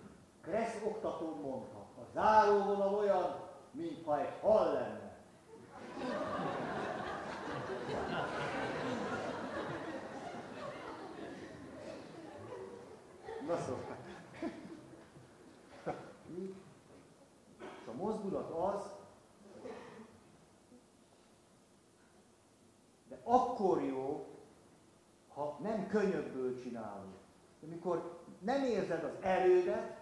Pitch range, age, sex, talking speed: 150-210 Hz, 50-69, male, 60 wpm